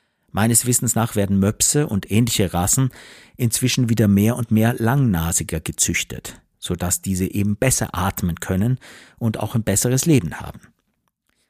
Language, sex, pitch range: German, male, 95-140 Hz